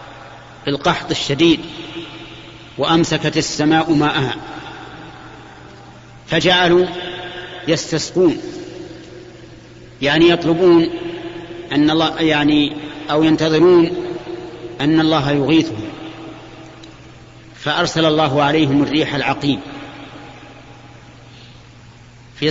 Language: Arabic